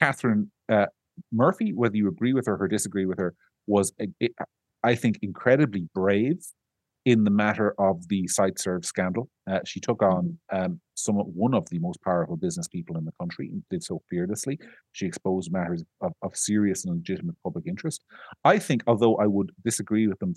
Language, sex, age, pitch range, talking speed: English, male, 40-59, 100-165 Hz, 185 wpm